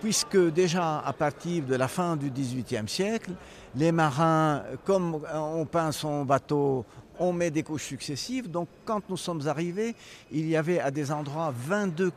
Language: French